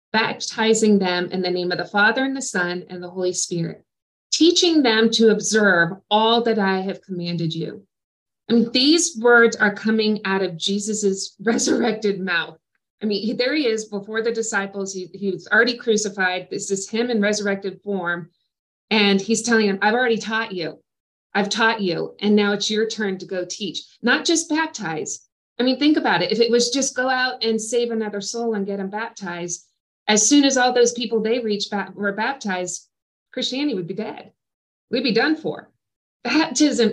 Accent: American